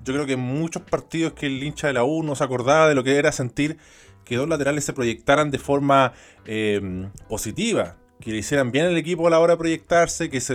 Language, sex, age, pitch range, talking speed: Spanish, male, 20-39, 120-150 Hz, 240 wpm